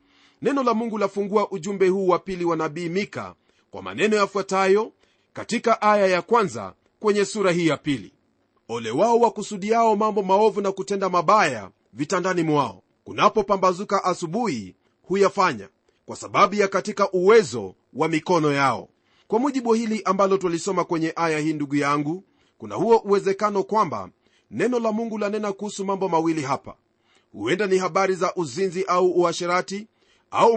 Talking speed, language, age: 145 wpm, Swahili, 40-59